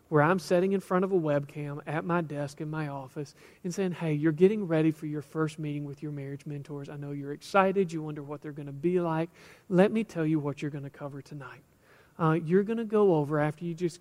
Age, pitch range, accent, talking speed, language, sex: 40-59, 155-190 Hz, American, 255 wpm, English, male